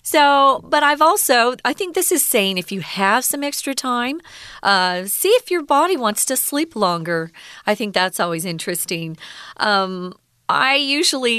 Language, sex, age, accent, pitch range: Chinese, female, 40-59, American, 180-255 Hz